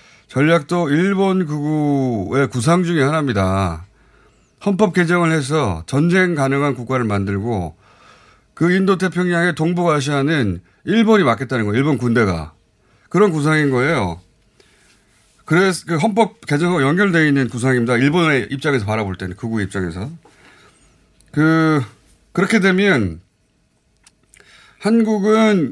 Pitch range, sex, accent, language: 110-170 Hz, male, native, Korean